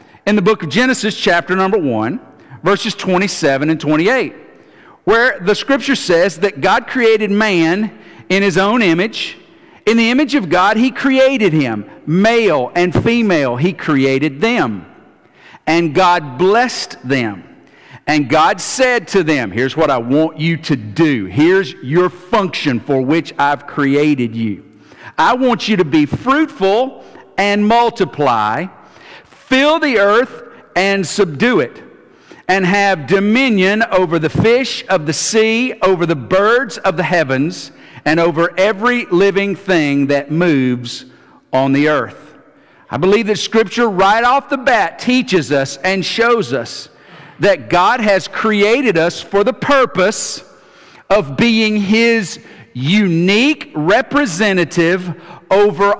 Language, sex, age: English, male, 50-69